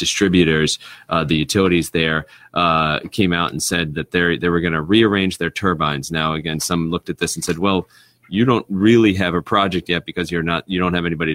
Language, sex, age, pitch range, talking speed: English, male, 30-49, 80-90 Hz, 215 wpm